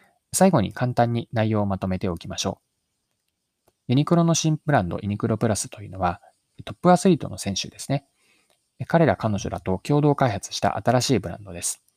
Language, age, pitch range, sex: Japanese, 20-39, 95-135 Hz, male